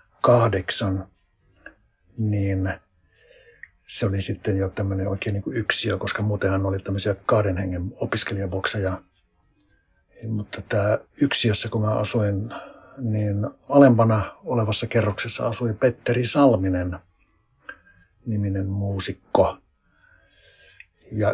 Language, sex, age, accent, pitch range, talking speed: Finnish, male, 60-79, native, 95-115 Hz, 85 wpm